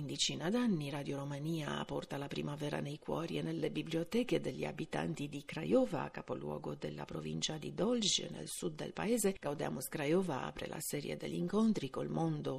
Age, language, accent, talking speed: 50-69, Italian, native, 160 wpm